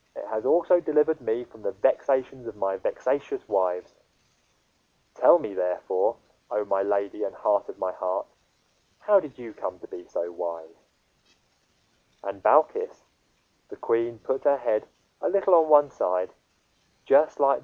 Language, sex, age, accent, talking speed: English, male, 20-39, British, 155 wpm